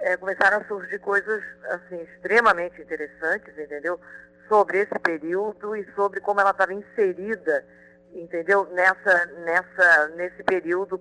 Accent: Brazilian